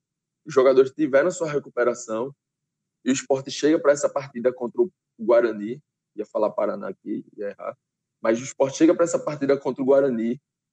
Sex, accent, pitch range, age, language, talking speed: male, Brazilian, 135-200 Hz, 20-39, Portuguese, 175 wpm